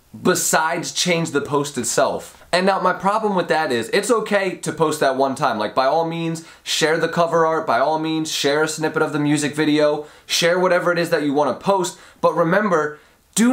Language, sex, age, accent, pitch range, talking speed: English, male, 20-39, American, 140-175 Hz, 215 wpm